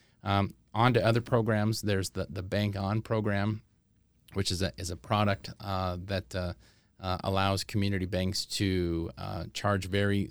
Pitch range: 90-100 Hz